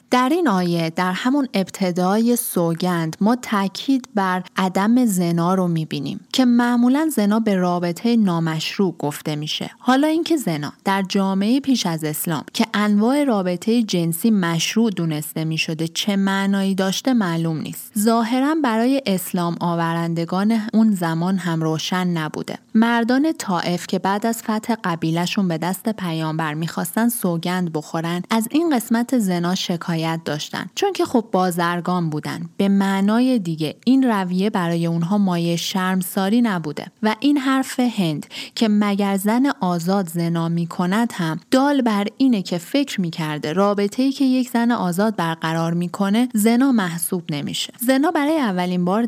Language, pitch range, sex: Persian, 170-230 Hz, female